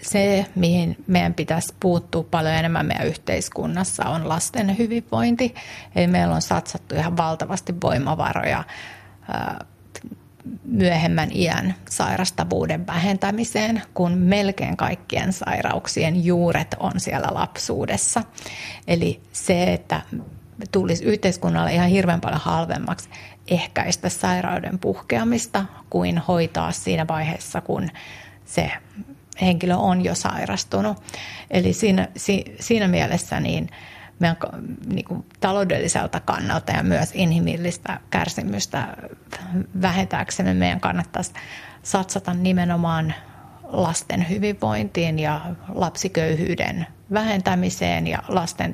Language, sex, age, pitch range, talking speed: Finnish, female, 30-49, 160-195 Hz, 95 wpm